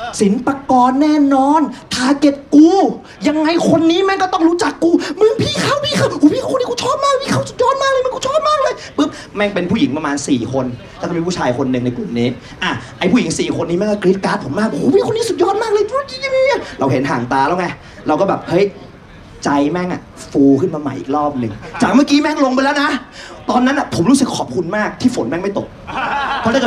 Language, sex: Thai, male